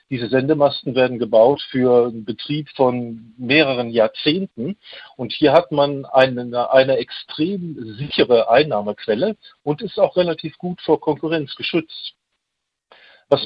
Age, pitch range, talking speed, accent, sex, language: 50-69, 130-160 Hz, 125 wpm, German, male, German